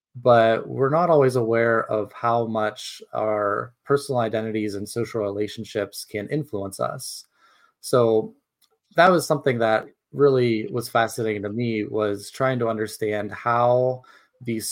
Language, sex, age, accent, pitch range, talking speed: English, male, 30-49, American, 105-130 Hz, 135 wpm